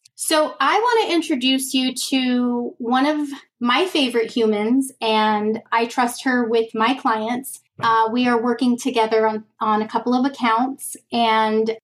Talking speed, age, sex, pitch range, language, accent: 155 wpm, 30-49, female, 225-270 Hz, English, American